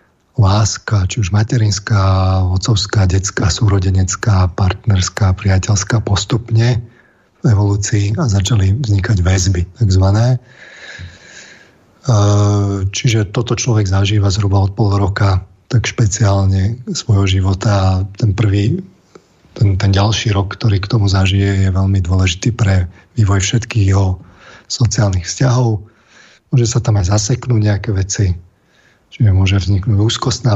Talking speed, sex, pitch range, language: 115 wpm, male, 95-115 Hz, Slovak